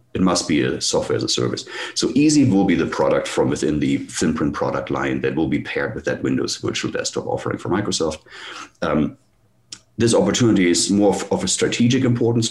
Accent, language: German, English